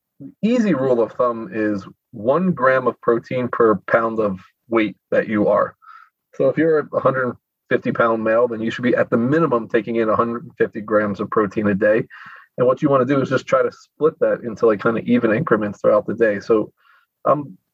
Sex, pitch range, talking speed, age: male, 110-160 Hz, 205 wpm, 30-49